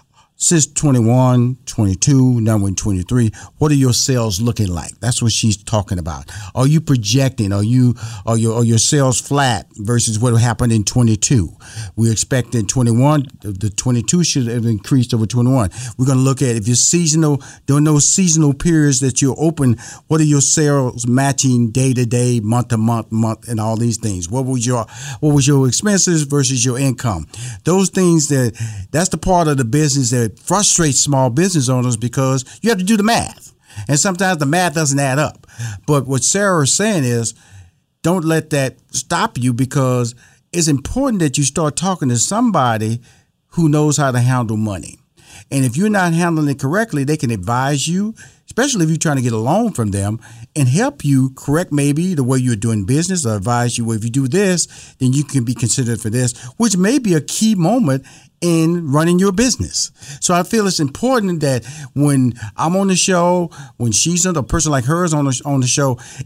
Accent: American